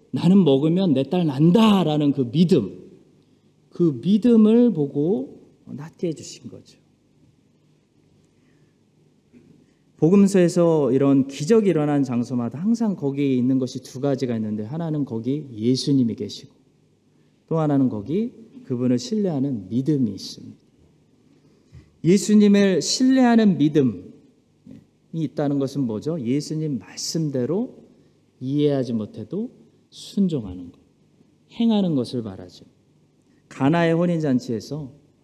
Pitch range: 125-180 Hz